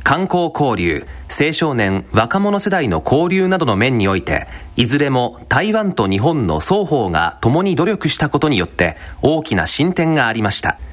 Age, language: 40-59, Japanese